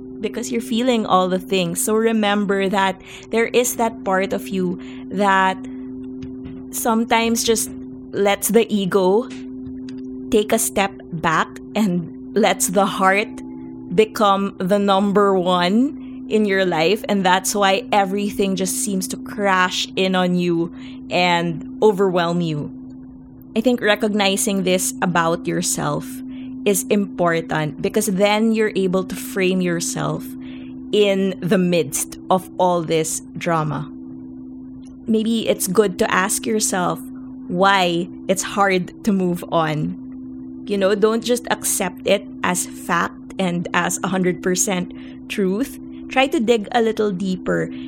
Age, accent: 20-39, Filipino